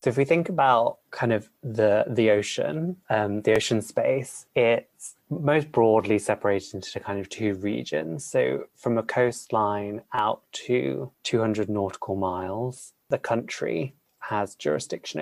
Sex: male